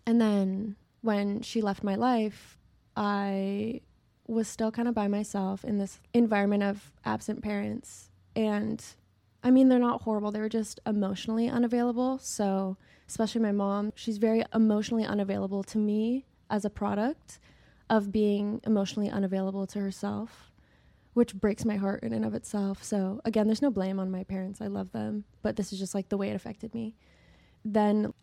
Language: English